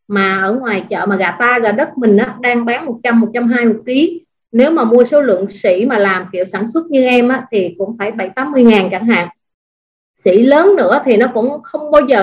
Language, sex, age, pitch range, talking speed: Vietnamese, female, 20-39, 200-255 Hz, 235 wpm